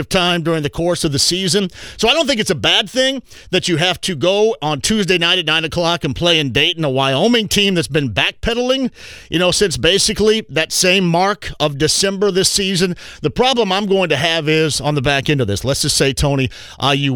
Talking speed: 230 wpm